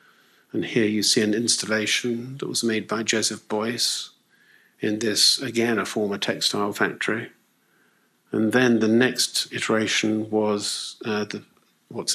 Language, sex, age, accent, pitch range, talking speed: English, male, 50-69, British, 105-115 Hz, 140 wpm